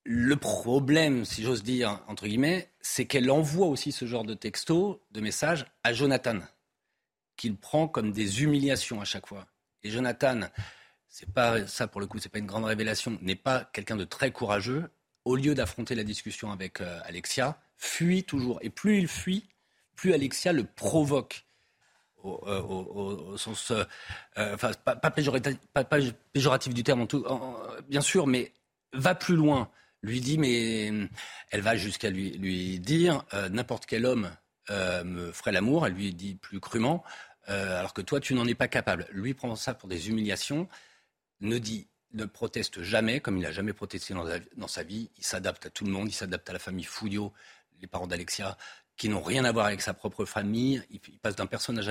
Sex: male